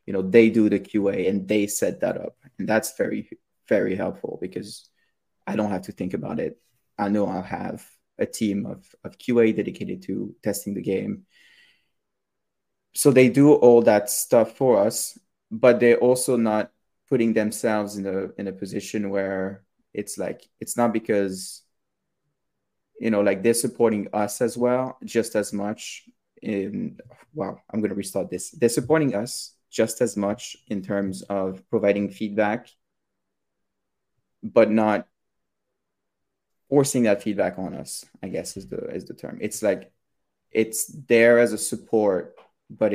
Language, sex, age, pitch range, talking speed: English, male, 20-39, 100-115 Hz, 160 wpm